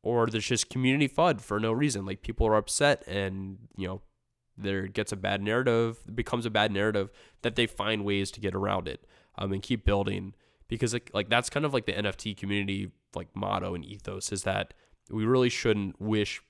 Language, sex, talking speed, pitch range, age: English, male, 205 wpm, 95-115 Hz, 20-39